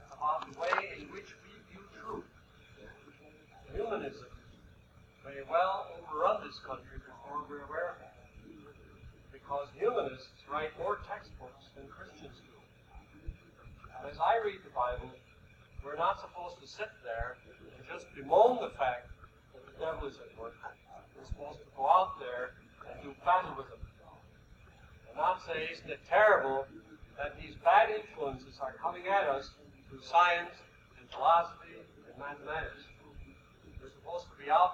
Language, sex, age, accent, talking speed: English, male, 60-79, American, 145 wpm